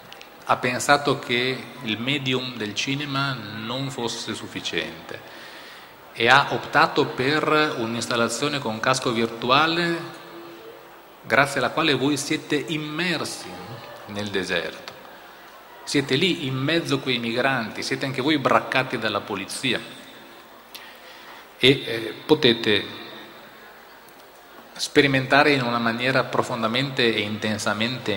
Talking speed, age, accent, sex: 105 wpm, 40-59, native, male